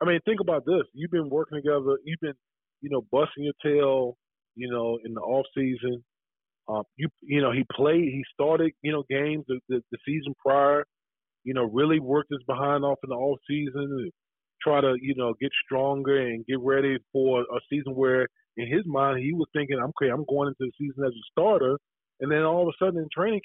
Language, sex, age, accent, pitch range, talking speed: English, male, 20-39, American, 130-160 Hz, 220 wpm